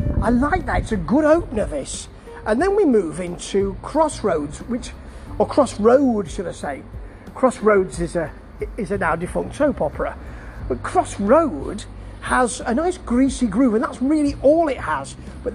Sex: male